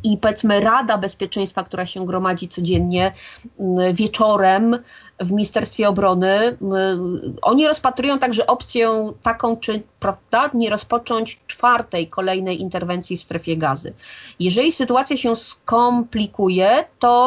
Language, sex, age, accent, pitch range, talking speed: Polish, female, 30-49, native, 195-240 Hz, 110 wpm